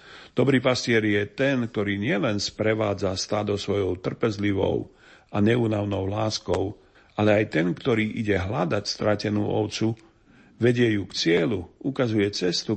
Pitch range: 105-120 Hz